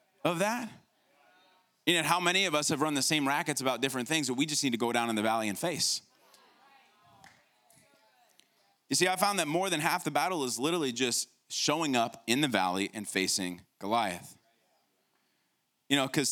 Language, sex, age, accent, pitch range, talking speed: English, male, 20-39, American, 140-185 Hz, 190 wpm